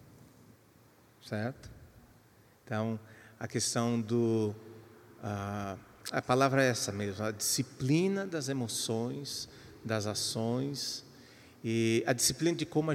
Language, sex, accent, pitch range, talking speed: Portuguese, male, Brazilian, 115-160 Hz, 105 wpm